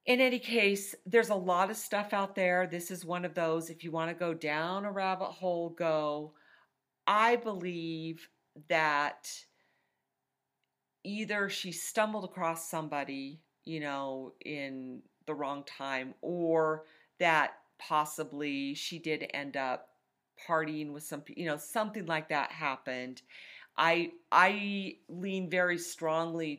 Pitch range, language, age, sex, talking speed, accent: 140-175 Hz, English, 40-59, female, 135 wpm, American